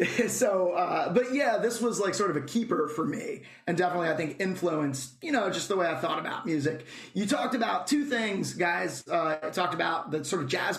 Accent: American